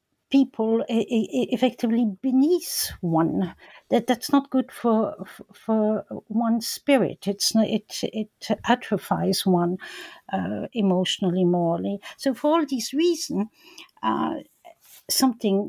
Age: 60-79